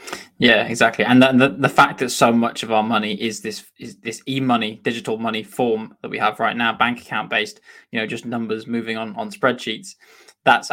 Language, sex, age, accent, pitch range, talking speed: English, male, 10-29, British, 110-140 Hz, 205 wpm